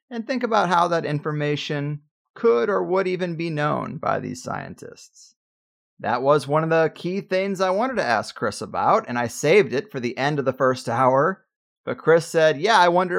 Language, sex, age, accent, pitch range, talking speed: English, male, 30-49, American, 135-185 Hz, 205 wpm